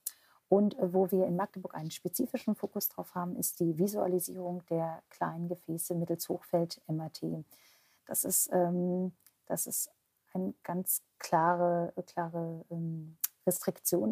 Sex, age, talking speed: female, 50-69, 115 wpm